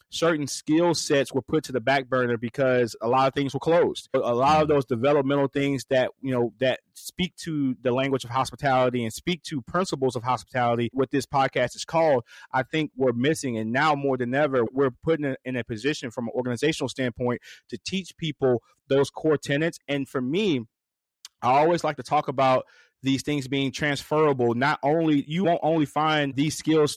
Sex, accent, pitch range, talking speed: male, American, 125-150 Hz, 200 wpm